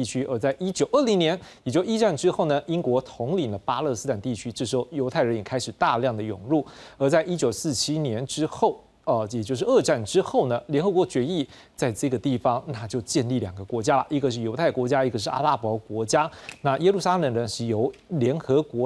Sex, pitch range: male, 120-160 Hz